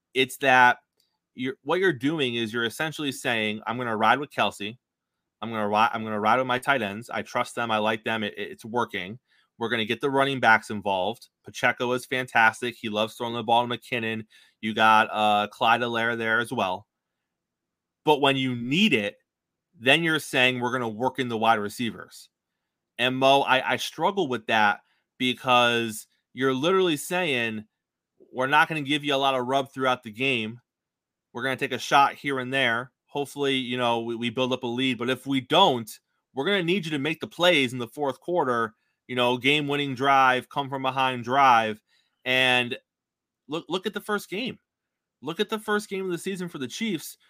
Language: English